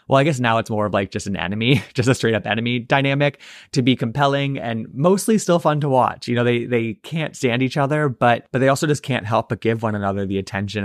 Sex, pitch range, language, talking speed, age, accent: male, 100-125 Hz, English, 260 wpm, 20-39, American